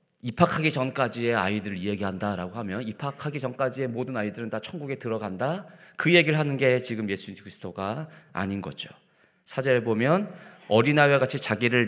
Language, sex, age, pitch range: Korean, male, 40-59, 105-150 Hz